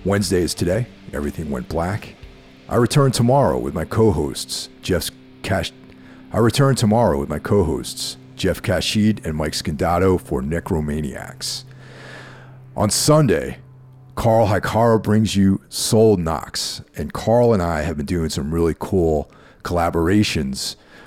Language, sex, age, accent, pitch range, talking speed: English, male, 50-69, American, 80-115 Hz, 130 wpm